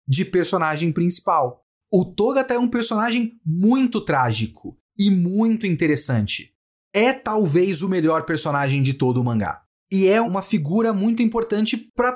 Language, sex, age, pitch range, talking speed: Portuguese, male, 30-49, 160-215 Hz, 145 wpm